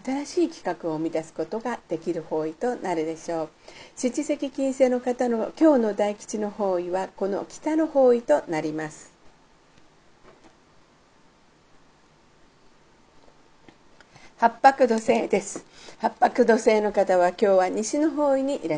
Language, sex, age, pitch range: Japanese, female, 50-69, 180-265 Hz